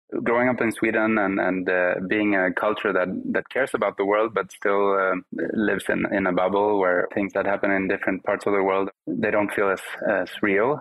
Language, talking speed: English, 220 wpm